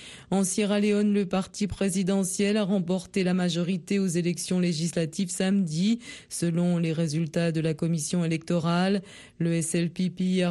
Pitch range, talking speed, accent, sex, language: 170-195 Hz, 135 wpm, French, female, French